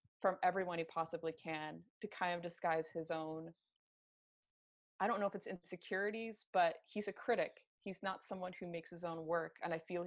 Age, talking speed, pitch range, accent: 20-39, 190 wpm, 170-200 Hz, American